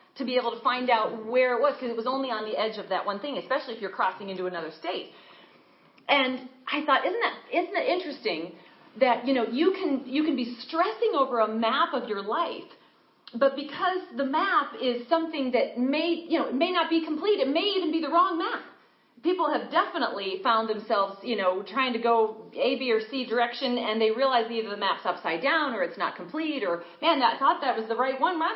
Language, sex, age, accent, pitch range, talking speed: English, female, 40-59, American, 220-305 Hz, 230 wpm